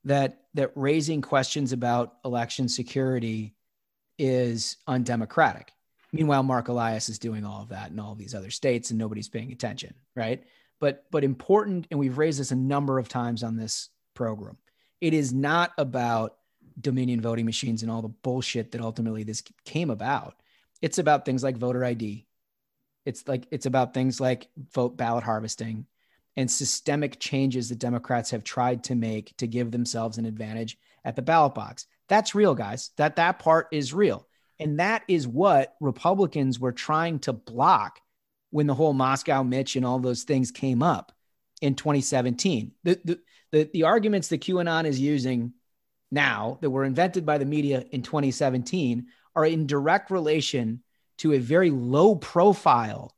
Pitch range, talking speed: 120-150 Hz, 165 wpm